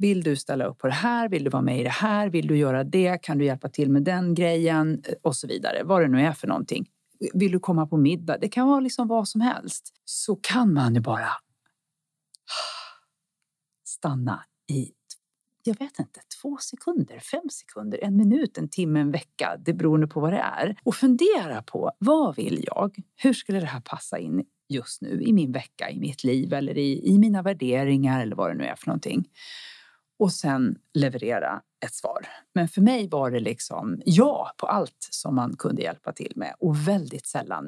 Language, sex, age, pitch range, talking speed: Swedish, female, 40-59, 140-205 Hz, 200 wpm